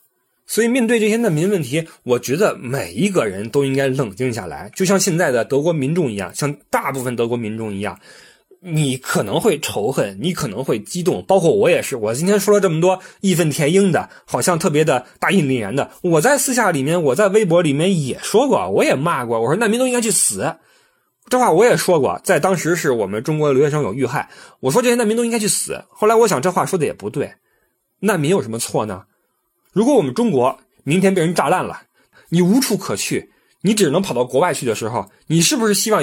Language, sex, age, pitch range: Chinese, male, 20-39, 140-205 Hz